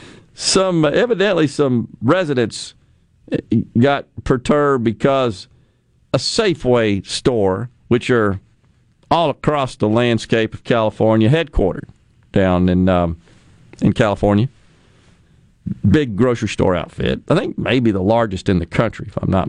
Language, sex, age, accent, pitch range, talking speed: English, male, 50-69, American, 115-160 Hz, 120 wpm